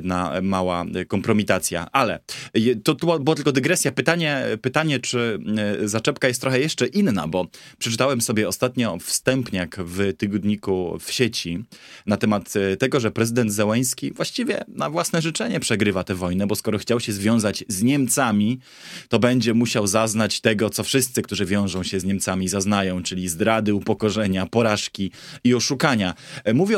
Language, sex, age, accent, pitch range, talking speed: Polish, male, 20-39, native, 100-130 Hz, 145 wpm